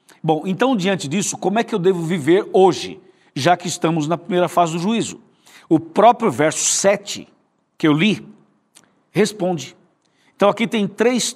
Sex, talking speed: male, 165 wpm